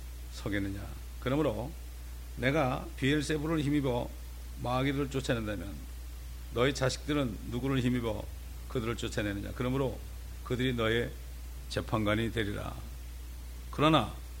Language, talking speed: English, 80 wpm